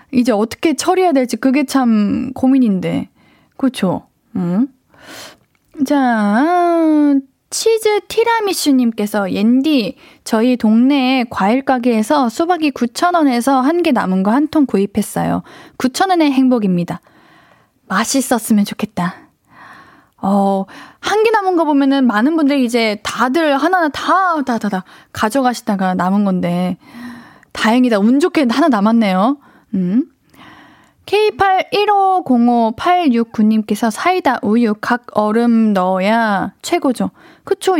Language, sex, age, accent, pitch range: Korean, female, 20-39, native, 215-300 Hz